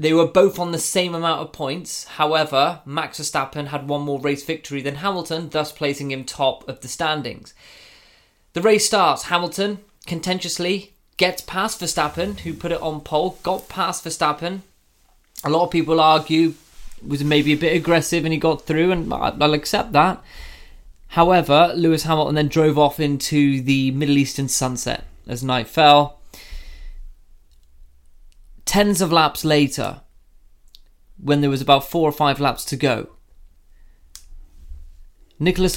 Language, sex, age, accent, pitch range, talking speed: English, male, 20-39, British, 130-170 Hz, 150 wpm